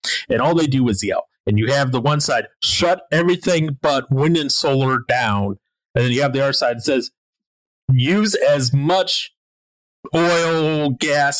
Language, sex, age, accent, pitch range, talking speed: English, male, 30-49, American, 115-165 Hz, 175 wpm